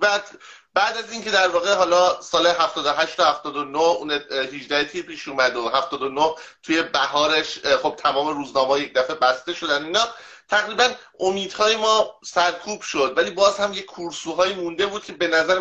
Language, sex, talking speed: English, male, 175 wpm